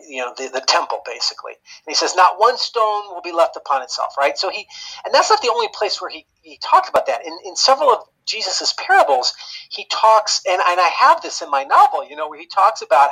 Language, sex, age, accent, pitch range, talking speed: English, male, 40-59, American, 155-235 Hz, 245 wpm